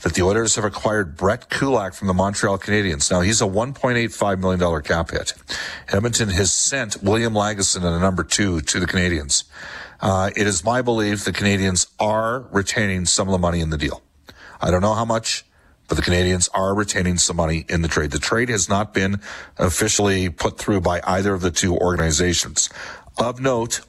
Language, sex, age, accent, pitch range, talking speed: English, male, 40-59, American, 85-105 Hz, 195 wpm